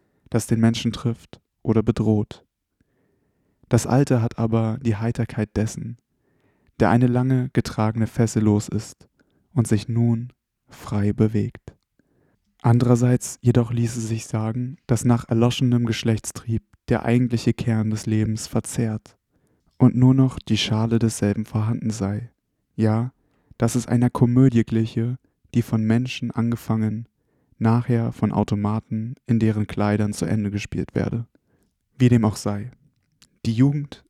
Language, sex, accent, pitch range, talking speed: German, male, German, 110-120 Hz, 130 wpm